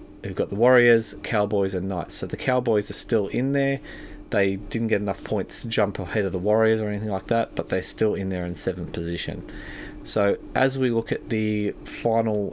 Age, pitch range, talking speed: 30-49, 95-120 Hz, 210 wpm